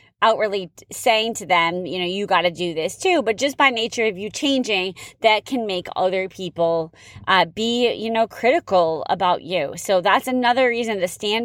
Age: 30-49